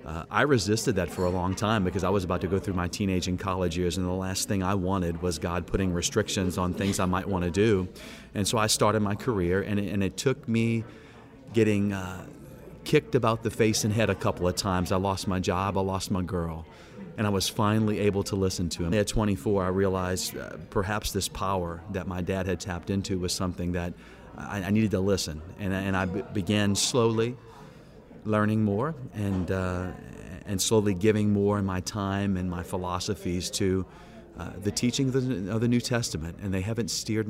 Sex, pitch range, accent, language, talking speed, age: male, 90-105 Hz, American, English, 210 wpm, 30-49